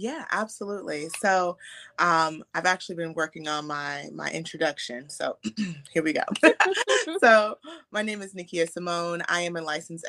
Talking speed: 155 wpm